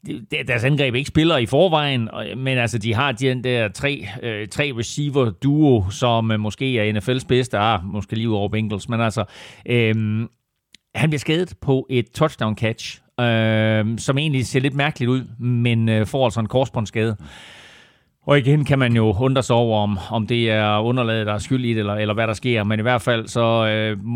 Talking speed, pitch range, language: 180 wpm, 105-125 Hz, Danish